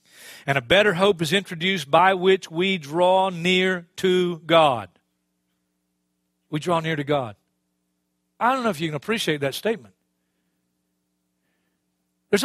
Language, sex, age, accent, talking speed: English, male, 40-59, American, 135 wpm